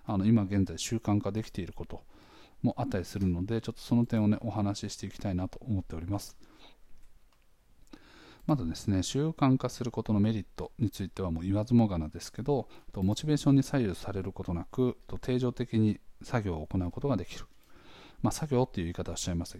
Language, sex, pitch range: Japanese, male, 95-120 Hz